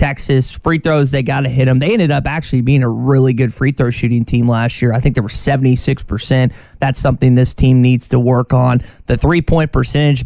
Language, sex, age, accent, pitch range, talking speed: English, male, 20-39, American, 125-150 Hz, 220 wpm